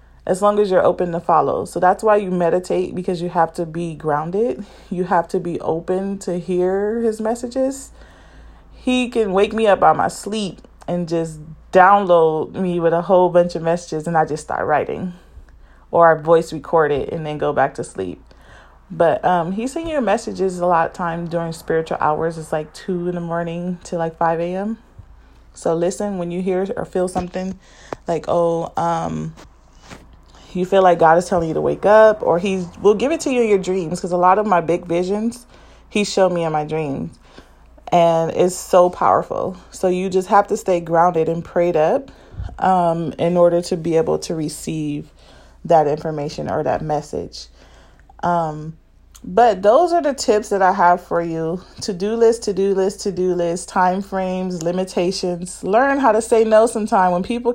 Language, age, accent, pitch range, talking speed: English, 30-49, American, 165-195 Hz, 195 wpm